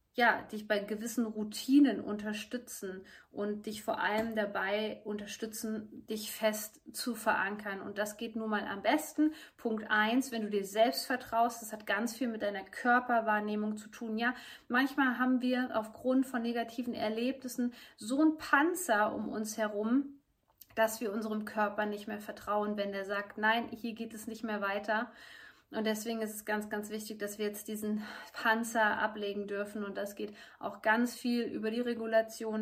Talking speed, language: 170 wpm, German